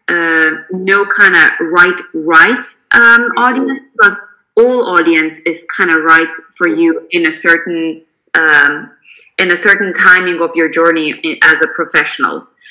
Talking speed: 140 wpm